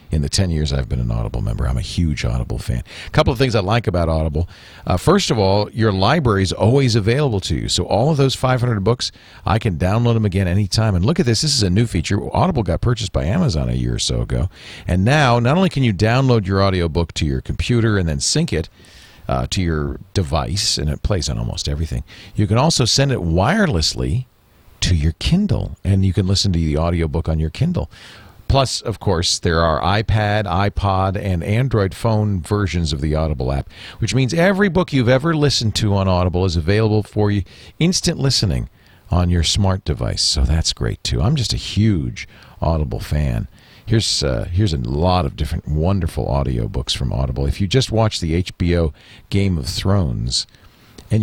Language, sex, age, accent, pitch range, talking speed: English, male, 40-59, American, 80-115 Hz, 205 wpm